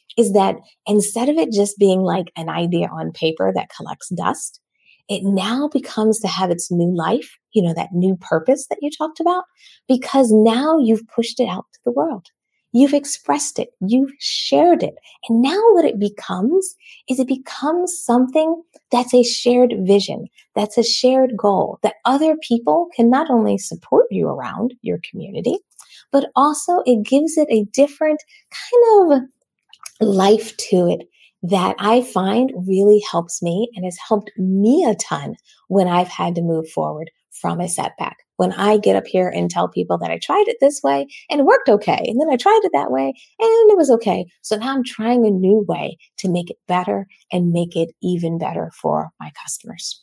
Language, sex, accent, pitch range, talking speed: English, female, American, 190-275 Hz, 185 wpm